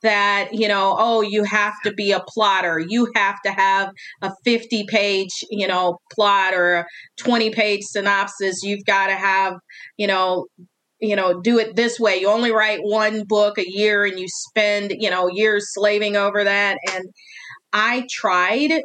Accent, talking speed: American, 180 wpm